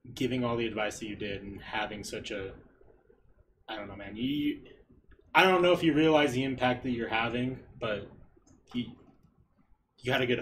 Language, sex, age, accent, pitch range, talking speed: English, male, 20-39, American, 105-125 Hz, 190 wpm